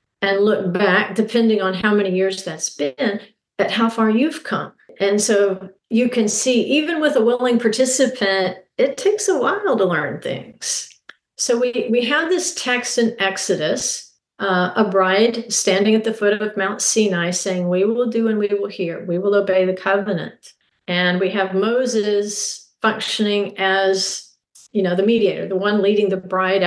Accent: American